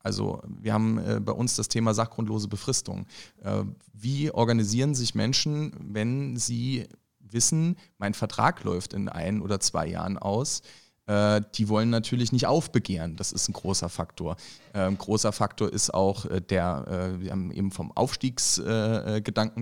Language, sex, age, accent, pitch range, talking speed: German, male, 30-49, German, 100-120 Hz, 160 wpm